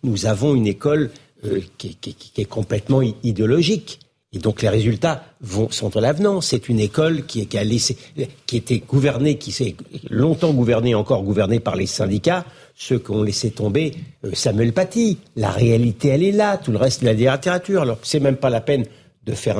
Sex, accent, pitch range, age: male, French, 115-160 Hz, 50-69